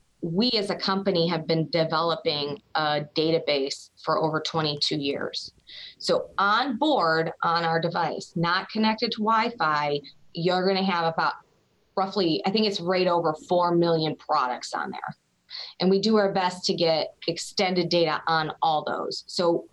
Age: 20-39